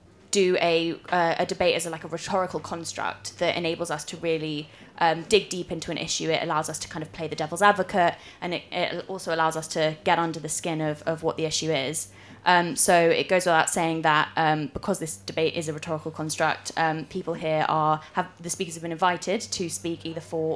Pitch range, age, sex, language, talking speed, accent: 165-185 Hz, 20-39, female, English, 230 wpm, British